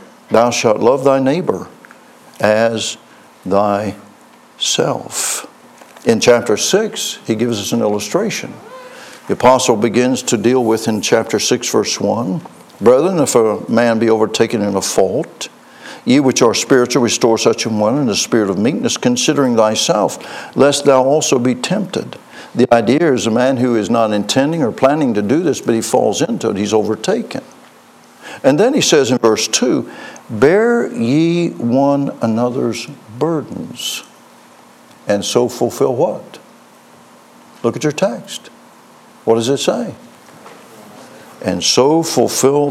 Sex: male